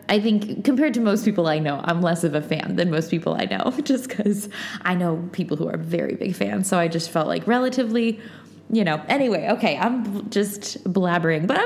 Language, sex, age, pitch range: English, female, 20-39, 180-250 Hz